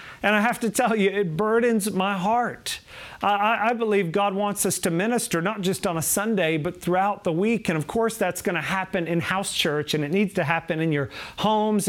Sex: male